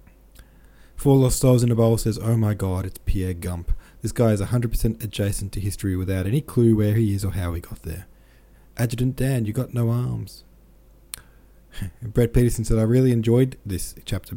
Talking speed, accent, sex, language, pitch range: 190 wpm, Australian, male, English, 95-125 Hz